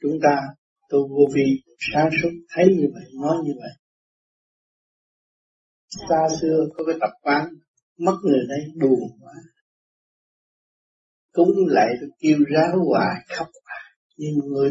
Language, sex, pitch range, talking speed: Vietnamese, male, 135-180 Hz, 135 wpm